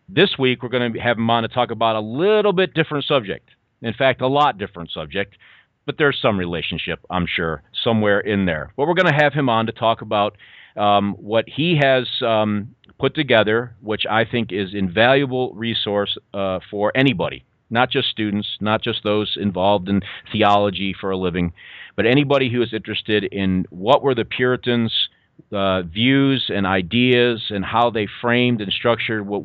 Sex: male